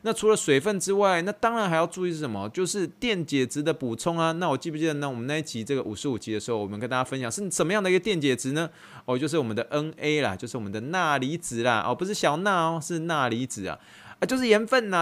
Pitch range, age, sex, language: 115-165 Hz, 20-39, male, Chinese